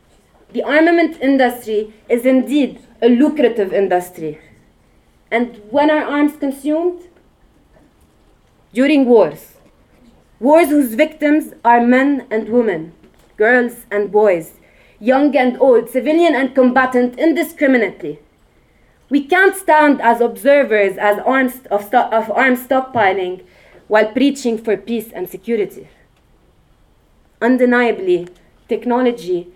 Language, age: English, 30-49